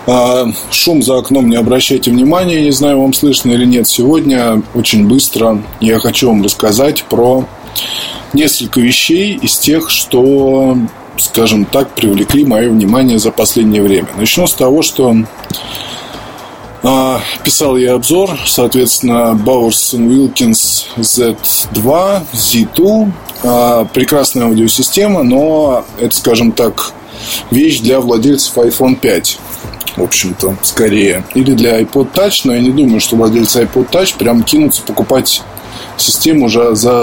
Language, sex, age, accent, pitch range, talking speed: Russian, male, 20-39, native, 110-135 Hz, 125 wpm